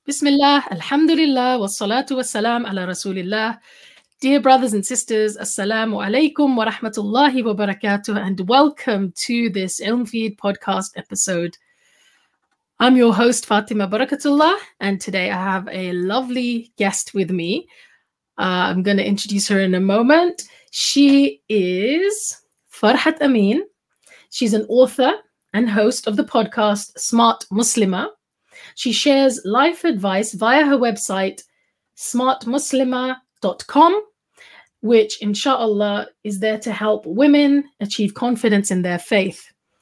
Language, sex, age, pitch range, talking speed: English, female, 30-49, 205-275 Hz, 115 wpm